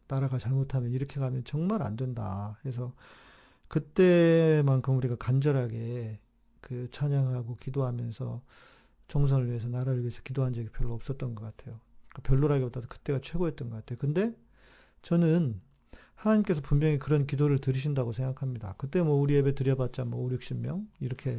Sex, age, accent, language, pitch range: male, 40-59, native, Korean, 125-155 Hz